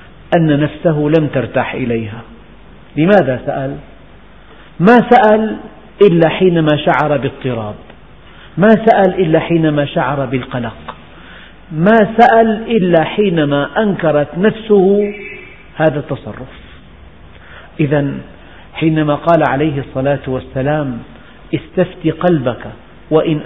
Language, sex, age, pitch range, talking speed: Arabic, male, 50-69, 140-185 Hz, 90 wpm